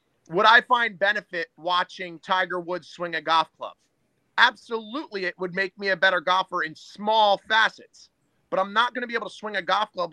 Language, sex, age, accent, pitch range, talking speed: English, male, 30-49, American, 170-200 Hz, 200 wpm